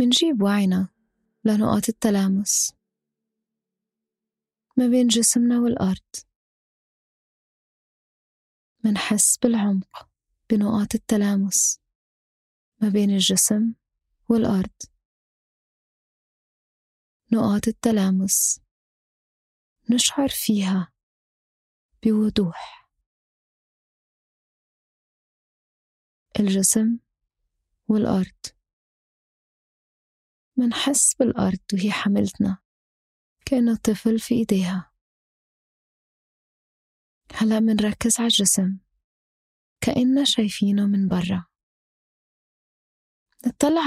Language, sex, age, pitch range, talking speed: Arabic, female, 20-39, 195-230 Hz, 55 wpm